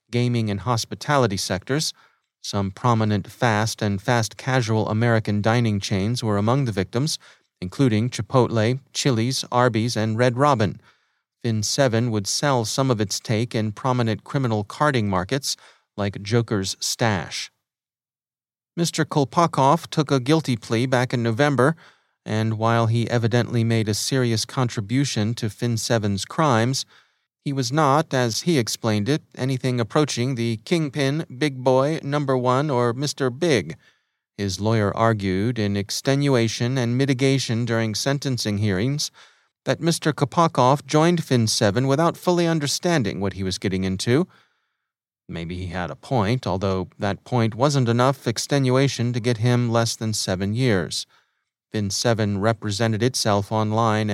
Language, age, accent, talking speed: English, 30-49, American, 135 wpm